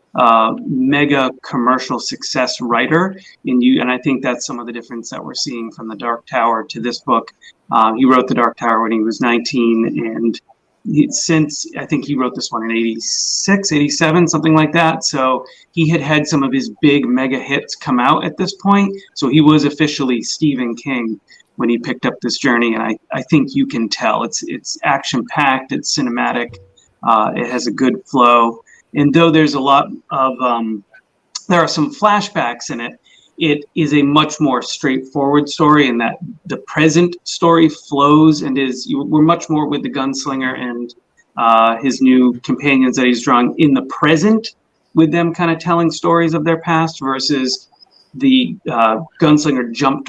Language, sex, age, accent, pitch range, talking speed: English, male, 30-49, American, 125-160 Hz, 185 wpm